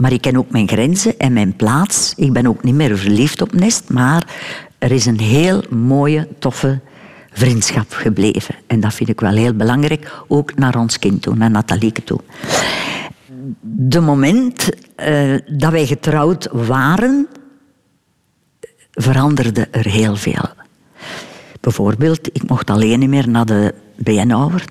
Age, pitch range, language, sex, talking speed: 60-79, 130-180 Hz, Dutch, female, 150 wpm